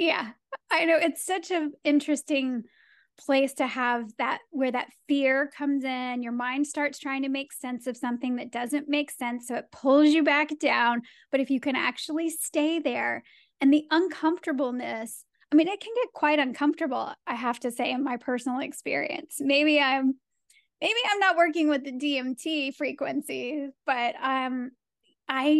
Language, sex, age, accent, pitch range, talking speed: English, female, 10-29, American, 255-305 Hz, 170 wpm